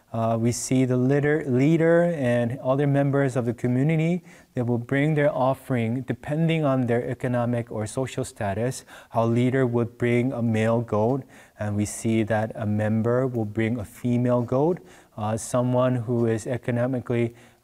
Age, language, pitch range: 20-39, English, 115-140 Hz